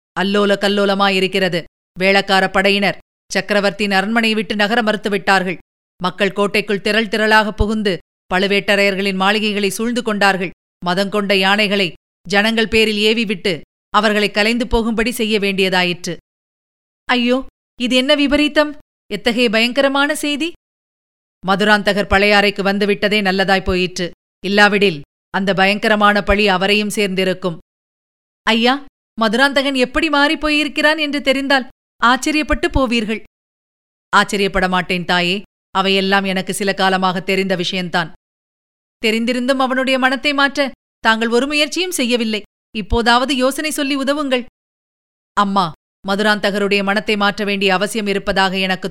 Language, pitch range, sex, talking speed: Tamil, 195-245 Hz, female, 105 wpm